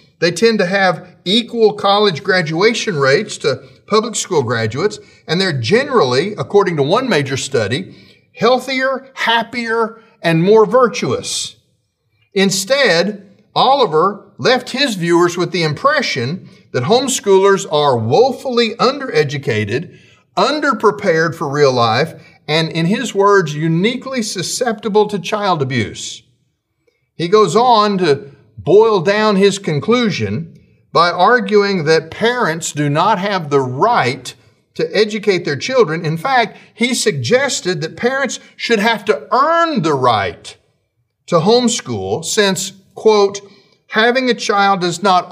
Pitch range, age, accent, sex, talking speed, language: 150-225 Hz, 50-69, American, male, 125 wpm, English